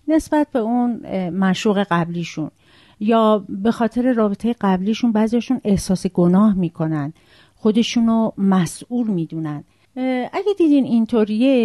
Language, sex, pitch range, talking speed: Persian, female, 185-255 Hz, 120 wpm